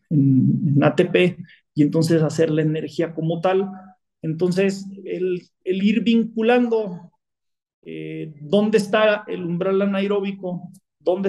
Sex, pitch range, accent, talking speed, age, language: male, 160-195 Hz, Mexican, 115 wpm, 40-59, Spanish